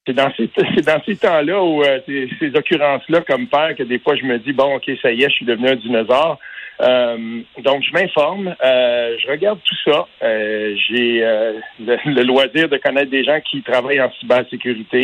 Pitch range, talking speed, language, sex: 125-175 Hz, 180 wpm, French, male